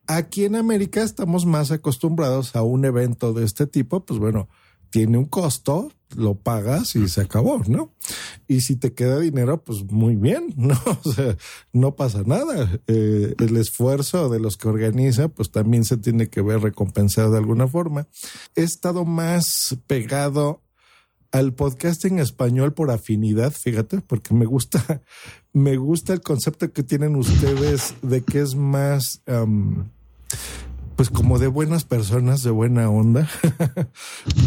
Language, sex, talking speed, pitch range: Spanish, male, 150 wpm, 115-155 Hz